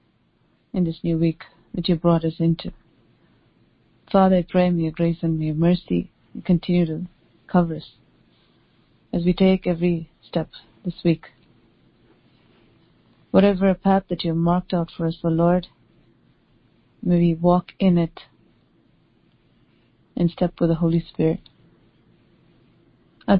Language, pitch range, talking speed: English, 165-185 Hz, 135 wpm